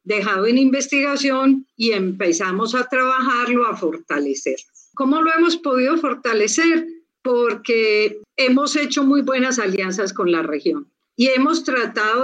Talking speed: 125 wpm